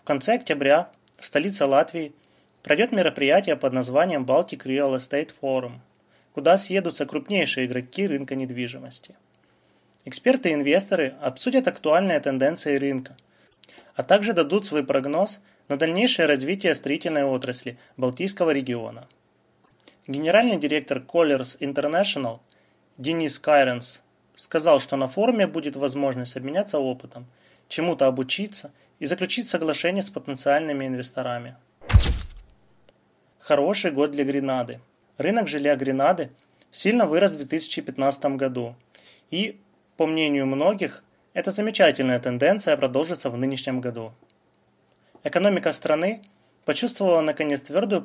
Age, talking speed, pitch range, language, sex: 20-39, 110 wpm, 130-165 Hz, Russian, male